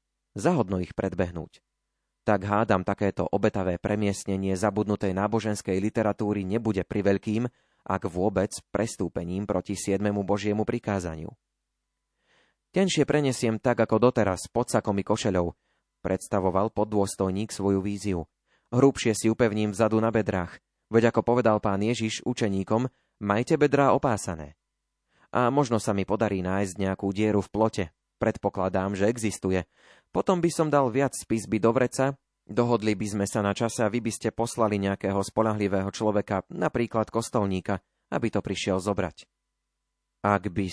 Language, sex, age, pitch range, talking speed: Slovak, male, 30-49, 95-115 Hz, 135 wpm